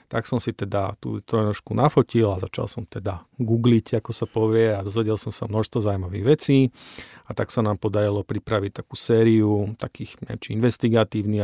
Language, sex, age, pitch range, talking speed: Slovak, male, 40-59, 105-115 Hz, 180 wpm